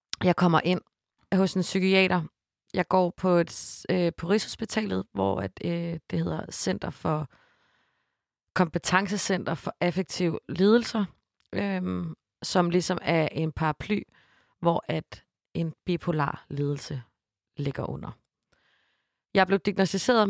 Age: 30-49